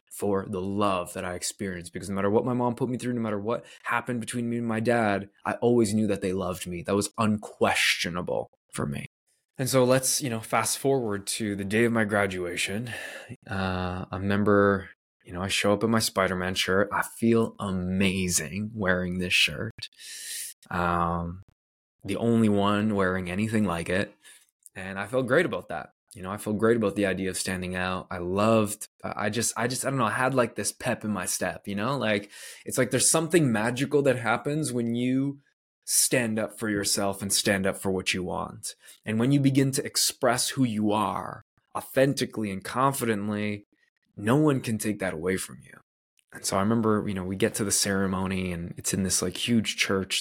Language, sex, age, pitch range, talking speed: English, male, 20-39, 95-115 Hz, 205 wpm